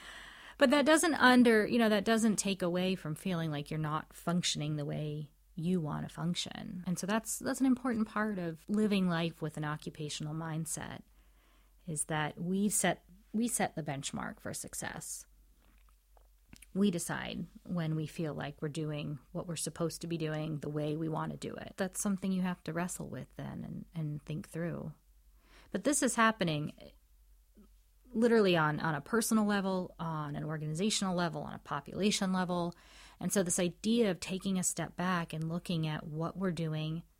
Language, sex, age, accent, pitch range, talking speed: English, female, 30-49, American, 155-195 Hz, 185 wpm